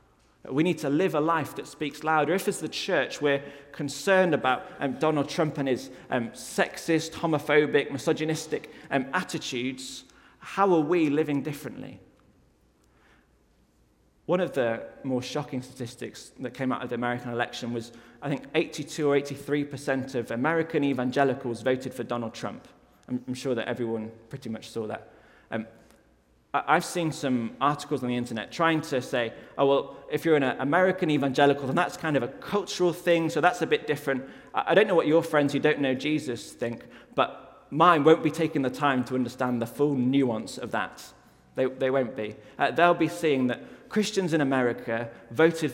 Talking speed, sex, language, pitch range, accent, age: 175 wpm, male, English, 125-155 Hz, British, 20-39